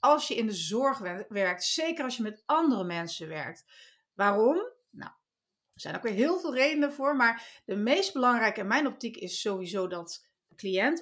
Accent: Dutch